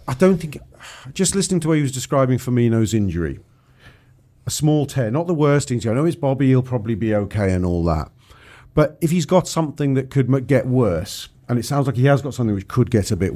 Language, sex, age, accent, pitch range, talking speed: English, male, 40-59, British, 95-130 Hz, 230 wpm